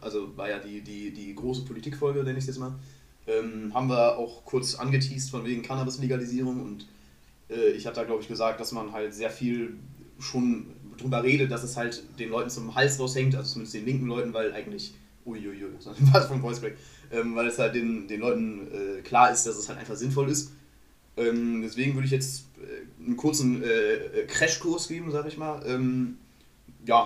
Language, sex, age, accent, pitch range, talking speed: German, male, 20-39, German, 110-135 Hz, 200 wpm